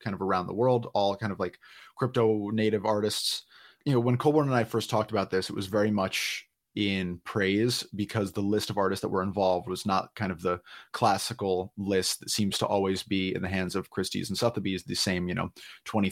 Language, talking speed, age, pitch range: English, 225 wpm, 30-49, 100-120 Hz